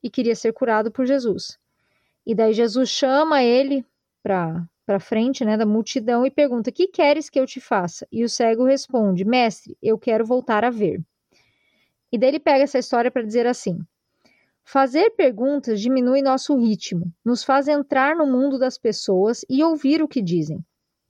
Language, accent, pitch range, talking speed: Portuguese, Brazilian, 220-280 Hz, 175 wpm